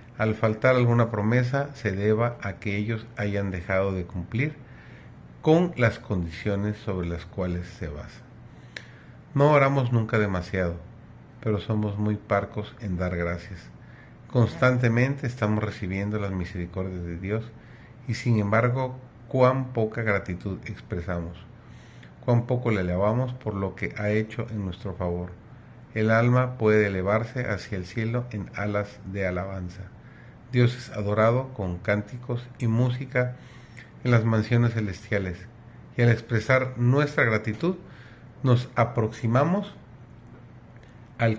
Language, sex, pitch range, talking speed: Spanish, male, 100-125 Hz, 130 wpm